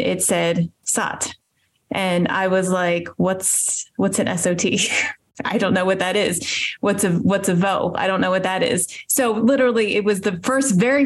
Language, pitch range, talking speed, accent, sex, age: English, 175-220 Hz, 190 wpm, American, female, 20-39